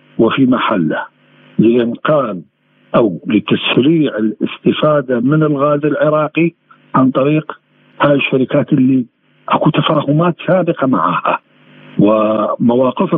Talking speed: 85 wpm